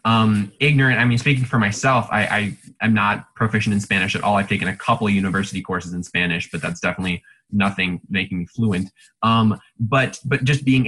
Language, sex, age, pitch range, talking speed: English, male, 20-39, 100-125 Hz, 200 wpm